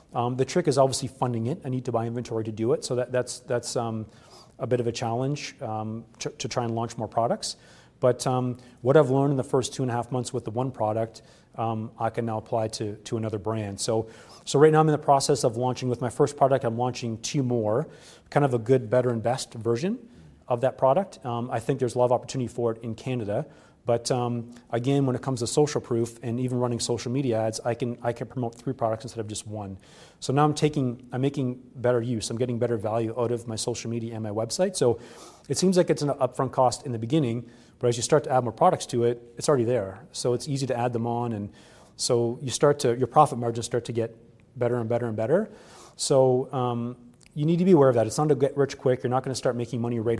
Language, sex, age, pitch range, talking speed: English, male, 30-49, 115-130 Hz, 260 wpm